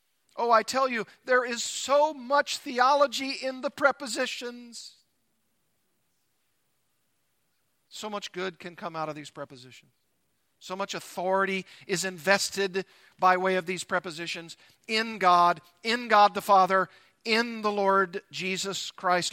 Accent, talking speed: American, 130 wpm